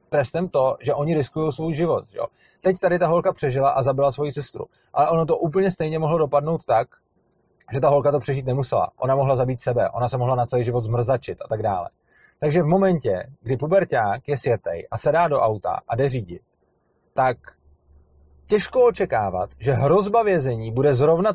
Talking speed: 190 wpm